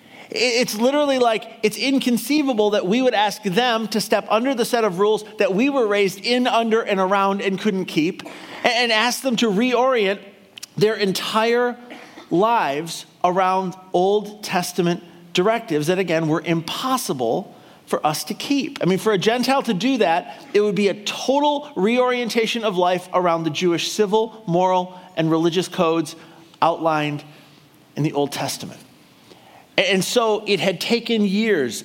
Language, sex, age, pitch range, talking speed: English, male, 40-59, 170-215 Hz, 155 wpm